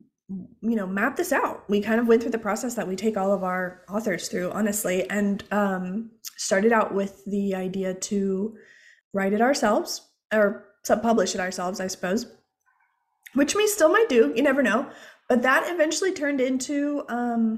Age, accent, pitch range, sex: 20-39, American, 205-310 Hz, female